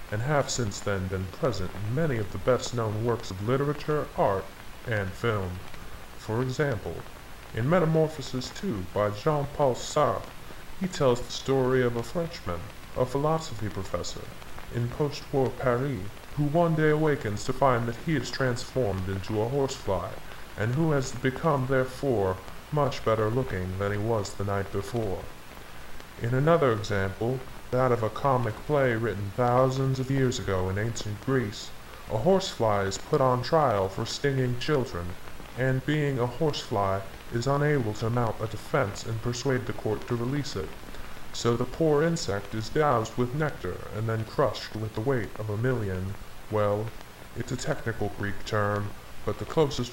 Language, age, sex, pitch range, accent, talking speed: English, 20-39, female, 105-140 Hz, American, 160 wpm